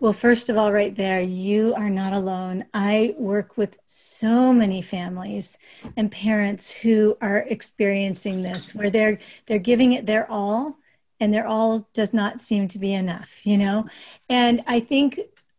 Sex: female